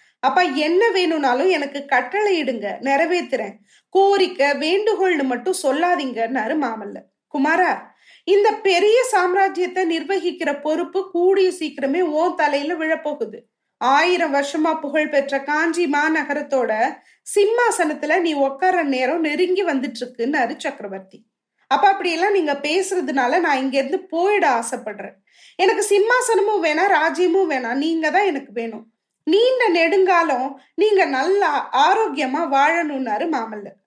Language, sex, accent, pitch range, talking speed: Tamil, female, native, 270-370 Hz, 105 wpm